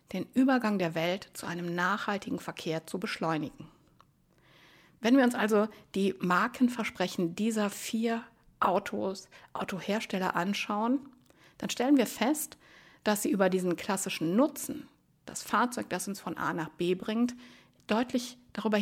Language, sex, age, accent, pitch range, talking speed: German, female, 50-69, German, 195-245 Hz, 135 wpm